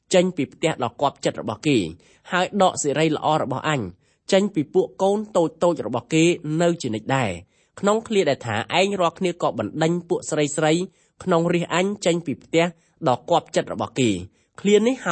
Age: 20-39